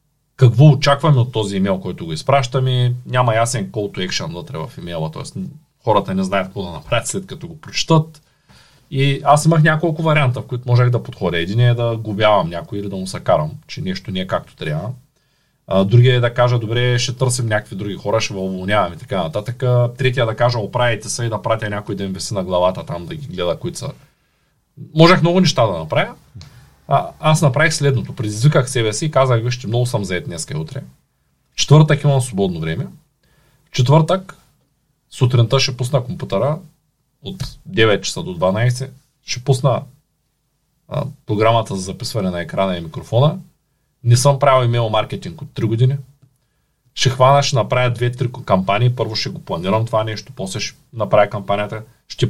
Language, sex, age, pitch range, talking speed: Bulgarian, male, 30-49, 110-145 Hz, 180 wpm